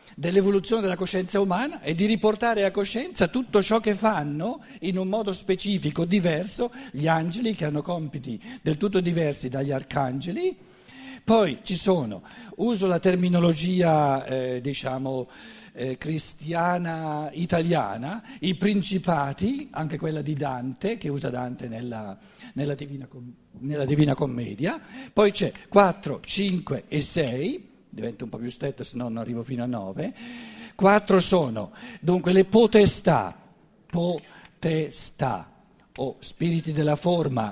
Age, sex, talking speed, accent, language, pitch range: 60-79, male, 130 wpm, native, Italian, 135-200 Hz